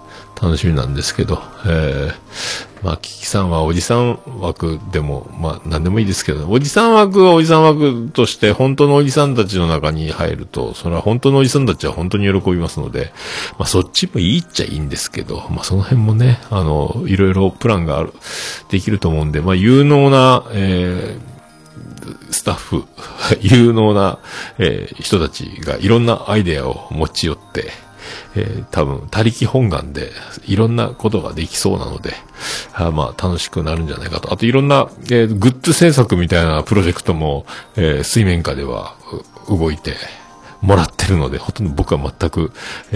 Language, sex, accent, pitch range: Japanese, male, native, 80-115 Hz